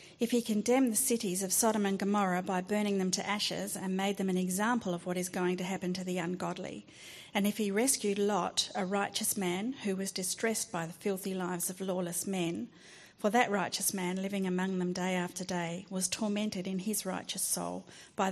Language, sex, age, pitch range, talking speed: English, female, 40-59, 185-210 Hz, 205 wpm